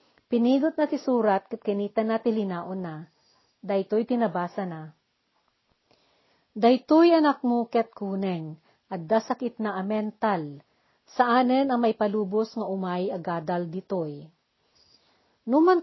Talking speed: 110 wpm